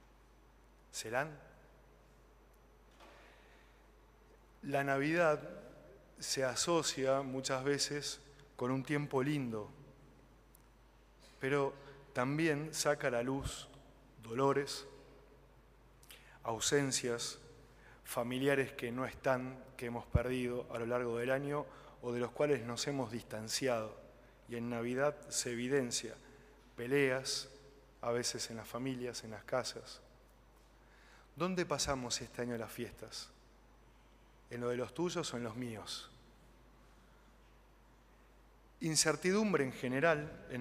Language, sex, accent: Spanish, male, Argentinian